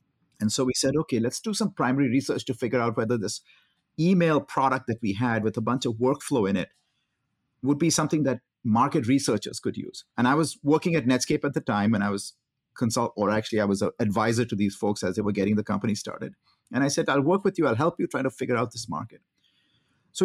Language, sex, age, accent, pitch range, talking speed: English, male, 50-69, Indian, 115-155 Hz, 240 wpm